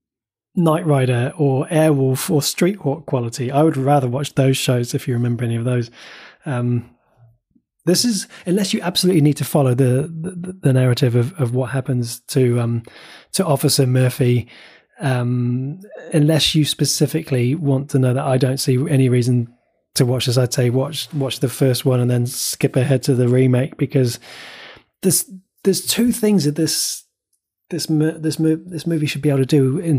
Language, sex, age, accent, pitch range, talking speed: English, male, 20-39, British, 130-160 Hz, 180 wpm